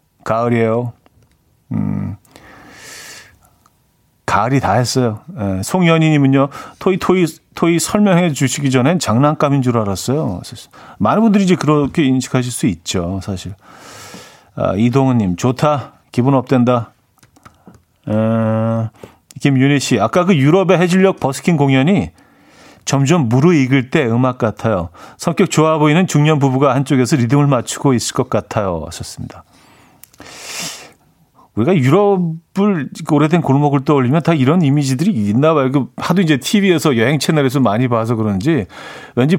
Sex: male